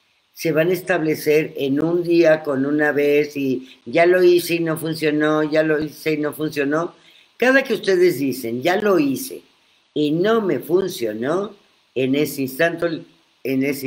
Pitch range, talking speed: 120-165 Hz, 160 wpm